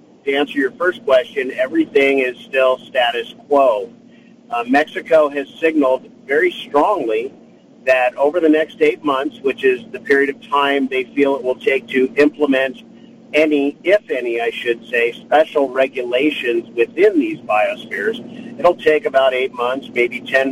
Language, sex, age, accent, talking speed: English, male, 50-69, American, 155 wpm